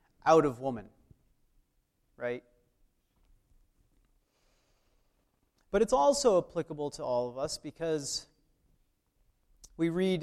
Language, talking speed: English, 90 wpm